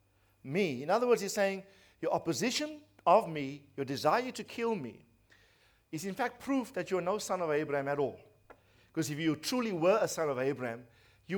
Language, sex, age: English, male, 50-69